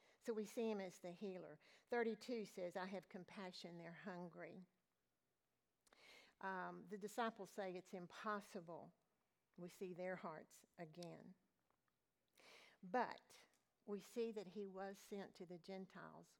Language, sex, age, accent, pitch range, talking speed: German, female, 50-69, American, 175-210 Hz, 130 wpm